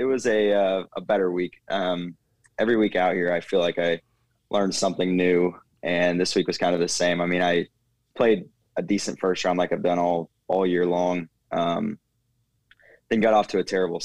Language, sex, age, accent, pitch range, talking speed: English, male, 20-39, American, 85-100 Hz, 210 wpm